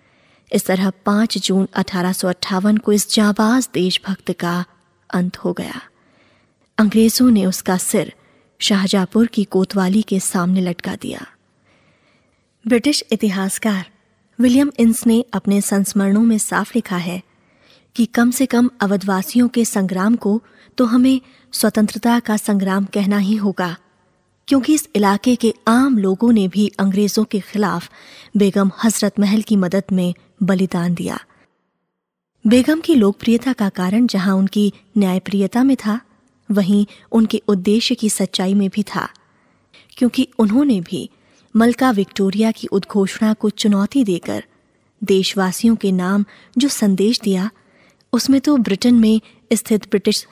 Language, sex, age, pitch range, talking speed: Hindi, female, 20-39, 195-230 Hz, 130 wpm